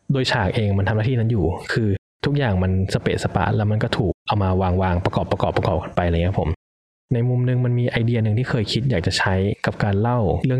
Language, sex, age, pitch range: Thai, male, 20-39, 95-120 Hz